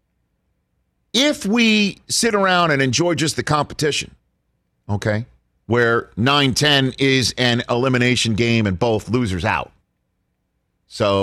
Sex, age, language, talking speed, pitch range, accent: male, 40-59, English, 110 wpm, 100-125 Hz, American